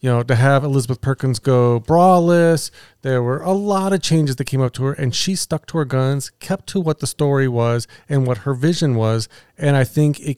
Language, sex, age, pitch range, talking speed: English, male, 40-59, 125-165 Hz, 230 wpm